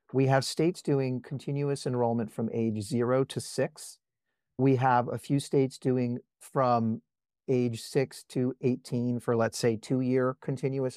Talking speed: 150 wpm